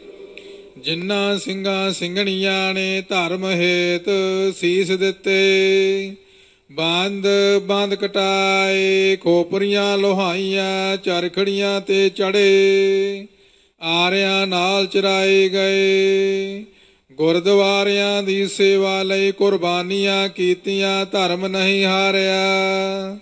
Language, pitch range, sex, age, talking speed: Punjabi, 190-200 Hz, male, 50-69, 75 wpm